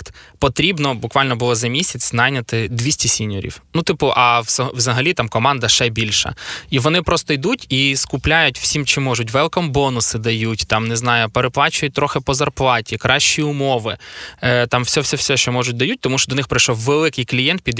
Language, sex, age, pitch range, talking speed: Ukrainian, male, 20-39, 115-135 Hz, 170 wpm